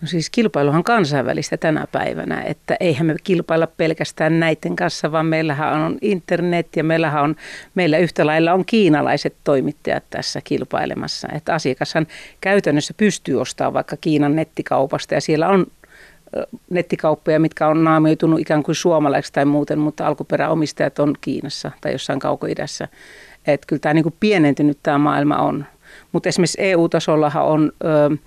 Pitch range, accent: 150-170 Hz, native